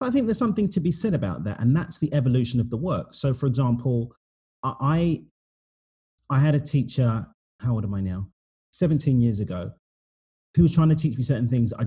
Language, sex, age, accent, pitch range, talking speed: English, male, 30-49, British, 110-150 Hz, 205 wpm